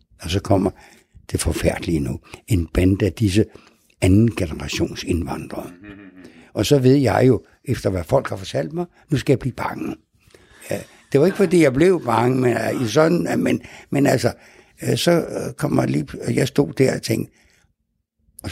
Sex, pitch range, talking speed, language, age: male, 115-150 Hz, 165 wpm, Danish, 60-79